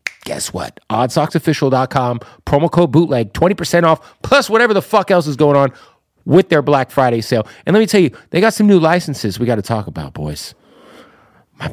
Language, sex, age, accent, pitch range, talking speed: English, male, 40-59, American, 125-190 Hz, 195 wpm